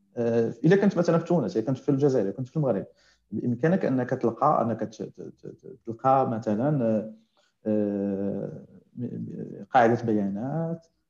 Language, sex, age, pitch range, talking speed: Arabic, male, 50-69, 110-155 Hz, 115 wpm